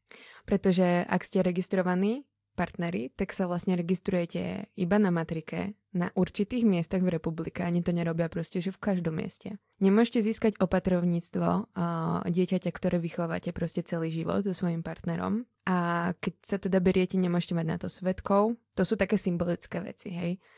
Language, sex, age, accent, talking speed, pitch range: Czech, female, 20-39, native, 155 wpm, 175-190 Hz